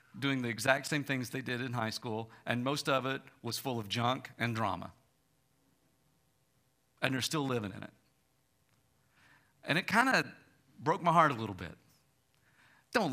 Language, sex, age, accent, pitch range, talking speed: English, male, 50-69, American, 125-180 Hz, 170 wpm